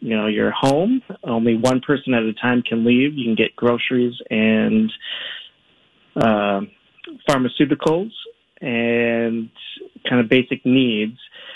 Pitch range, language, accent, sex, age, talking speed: 110-140 Hz, English, American, male, 30-49, 125 wpm